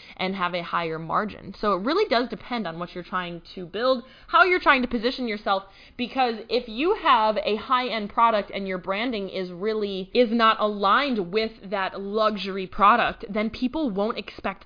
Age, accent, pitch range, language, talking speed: 20-39, American, 190-245 Hz, English, 185 wpm